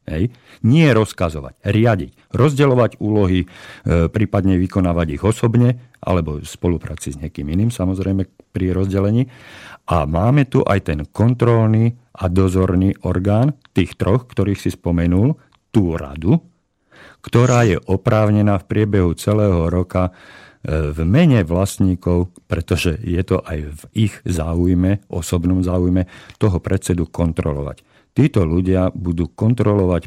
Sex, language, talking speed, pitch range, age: male, Slovak, 120 wpm, 85-105 Hz, 50-69